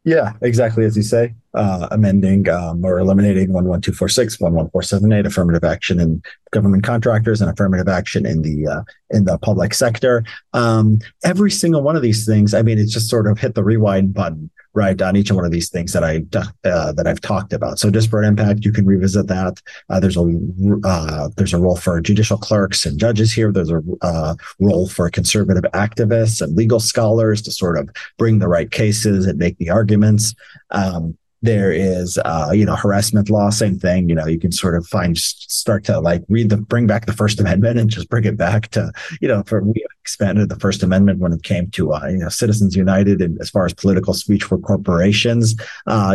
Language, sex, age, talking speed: English, male, 40-59, 215 wpm